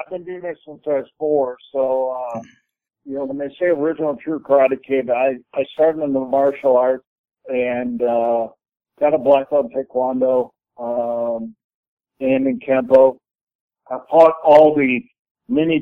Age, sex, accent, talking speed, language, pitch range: 50-69, male, American, 165 wpm, English, 130-150 Hz